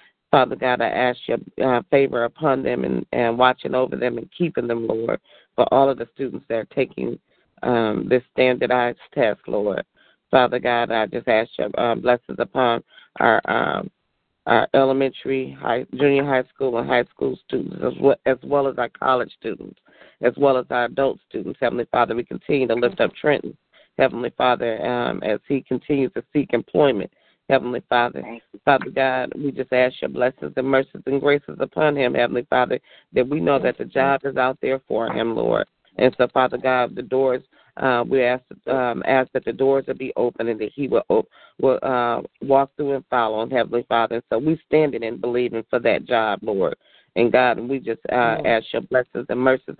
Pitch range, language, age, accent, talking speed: 120-135 Hz, English, 40-59, American, 195 wpm